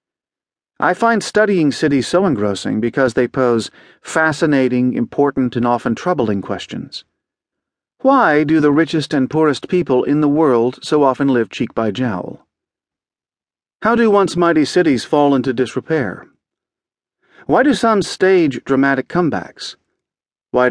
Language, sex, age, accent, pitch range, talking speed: English, male, 50-69, American, 115-155 Hz, 135 wpm